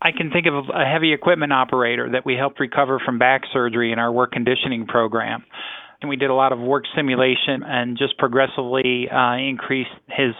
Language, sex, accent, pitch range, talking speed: English, male, American, 120-135 Hz, 195 wpm